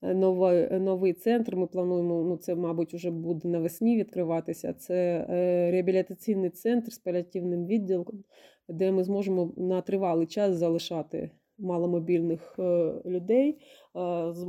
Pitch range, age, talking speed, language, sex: 175-210 Hz, 30-49, 115 wpm, Ukrainian, female